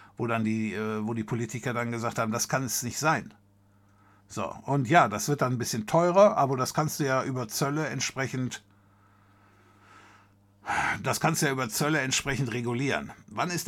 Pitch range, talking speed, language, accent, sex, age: 105-145 Hz, 170 wpm, German, German, male, 60-79